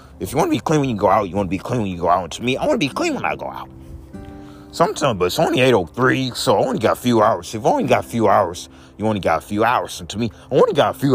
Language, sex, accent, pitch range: English, male, American, 75-120 Hz